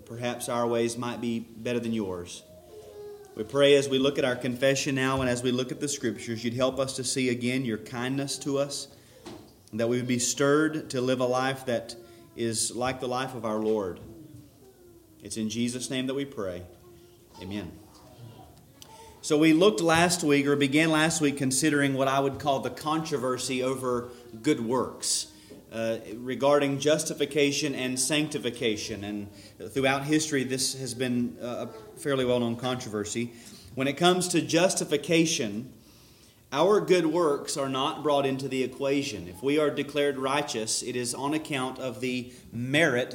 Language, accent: English, American